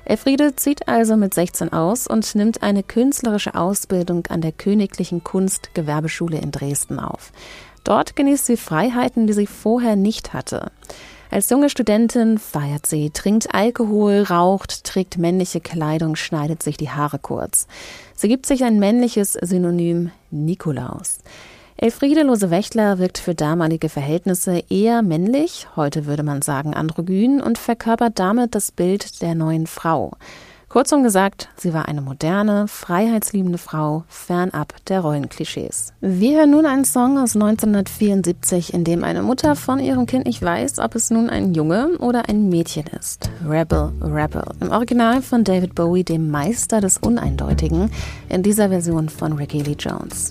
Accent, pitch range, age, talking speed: German, 160-230 Hz, 30-49, 150 wpm